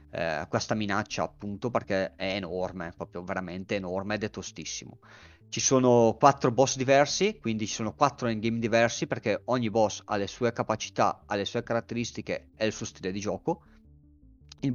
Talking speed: 165 wpm